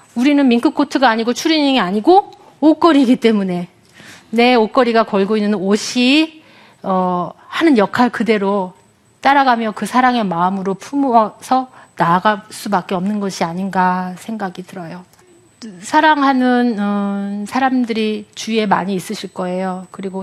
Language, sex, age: Korean, female, 40-59